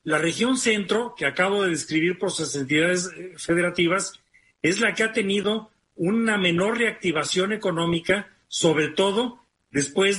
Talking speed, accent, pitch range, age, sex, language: 135 wpm, Mexican, 165-205 Hz, 40-59, male, Spanish